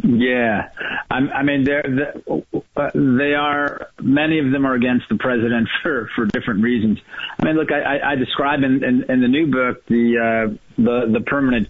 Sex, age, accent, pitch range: male, 40-59, American, 115-135 Hz